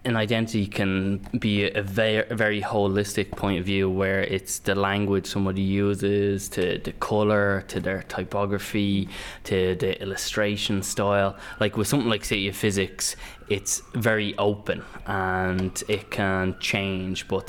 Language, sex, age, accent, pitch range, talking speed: English, male, 10-29, Irish, 95-105 Hz, 140 wpm